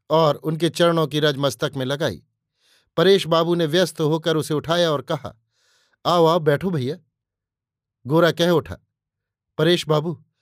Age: 50-69